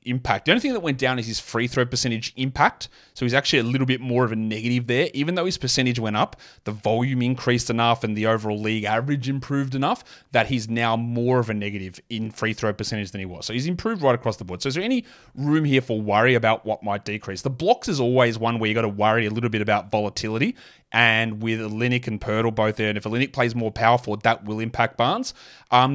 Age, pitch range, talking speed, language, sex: 30-49, 110-130 Hz, 245 wpm, English, male